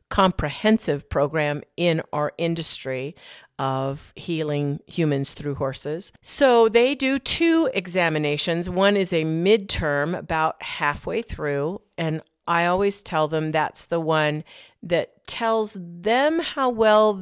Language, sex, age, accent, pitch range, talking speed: English, female, 50-69, American, 150-185 Hz, 120 wpm